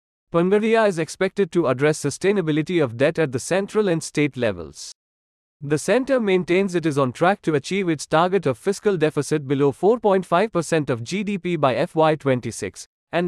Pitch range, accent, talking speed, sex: 140-185 Hz, Indian, 160 wpm, male